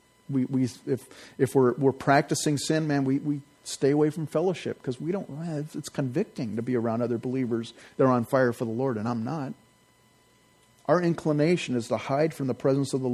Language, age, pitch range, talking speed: English, 40-59, 120-145 Hz, 205 wpm